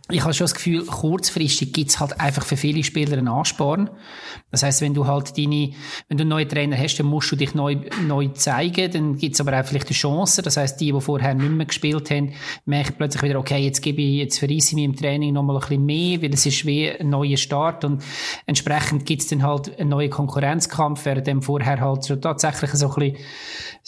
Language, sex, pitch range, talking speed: German, male, 140-155 Hz, 225 wpm